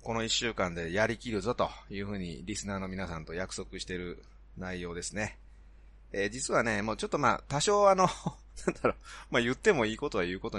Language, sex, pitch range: Japanese, male, 80-115 Hz